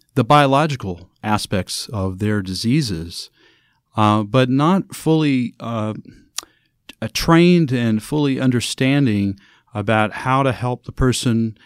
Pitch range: 110-140 Hz